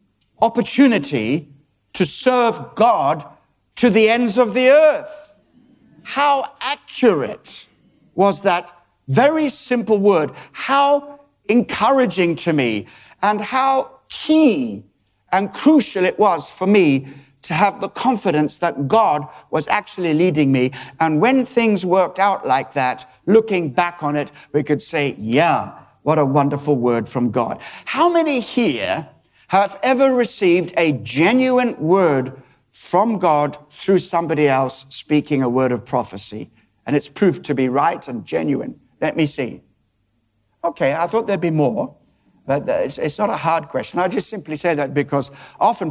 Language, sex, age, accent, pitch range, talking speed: English, male, 60-79, British, 135-210 Hz, 145 wpm